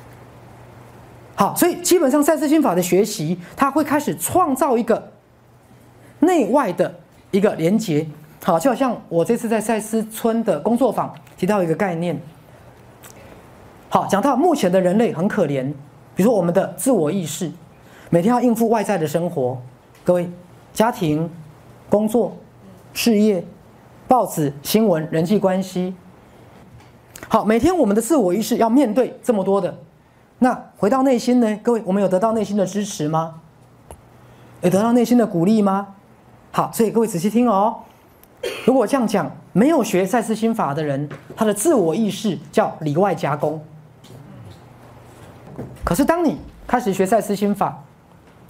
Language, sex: Chinese, male